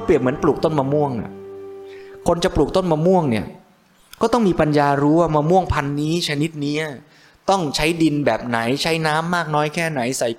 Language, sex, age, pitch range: Thai, male, 20-39, 120-165 Hz